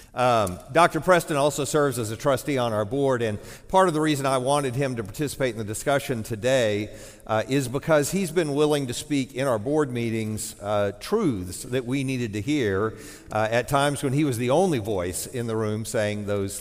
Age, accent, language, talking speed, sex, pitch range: 50-69, American, English, 210 wpm, male, 105-135 Hz